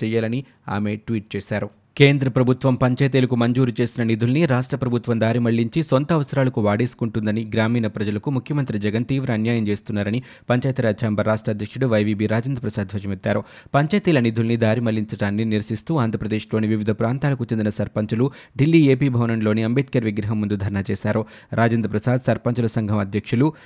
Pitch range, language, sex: 110-130 Hz, Telugu, male